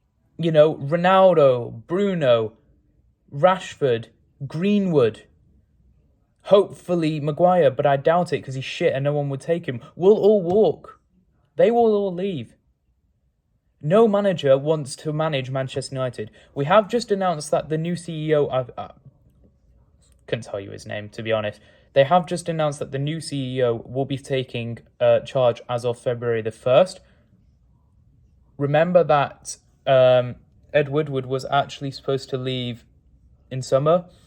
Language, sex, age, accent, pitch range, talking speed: English, male, 20-39, British, 120-155 Hz, 145 wpm